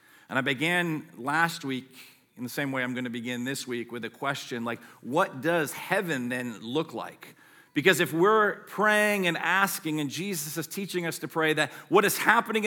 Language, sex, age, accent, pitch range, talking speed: English, male, 40-59, American, 145-185 Hz, 195 wpm